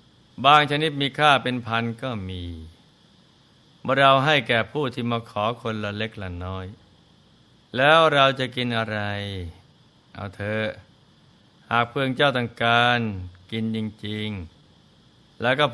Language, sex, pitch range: Thai, male, 105-135 Hz